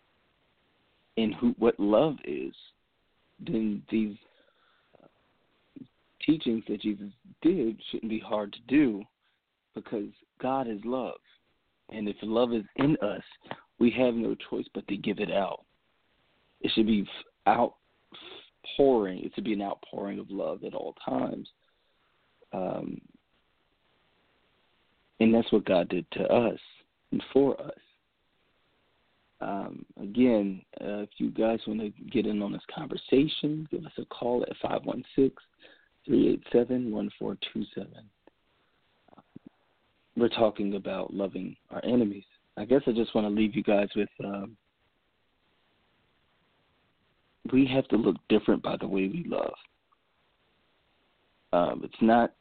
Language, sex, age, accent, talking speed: English, male, 40-59, American, 125 wpm